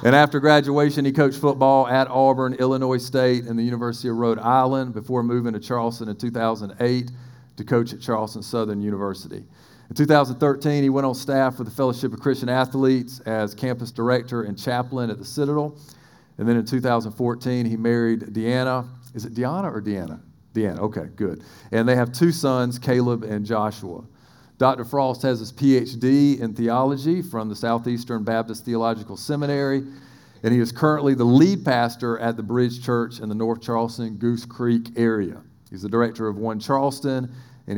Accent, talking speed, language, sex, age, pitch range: American, 175 wpm, English, male, 40-59, 115-135 Hz